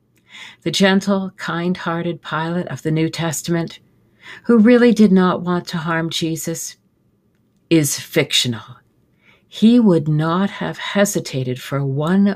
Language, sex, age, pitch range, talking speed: English, female, 60-79, 140-190 Hz, 120 wpm